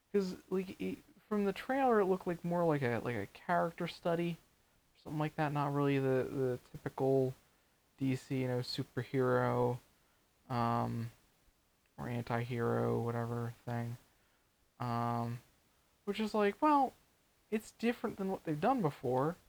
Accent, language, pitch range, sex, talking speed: American, English, 120-170 Hz, male, 130 wpm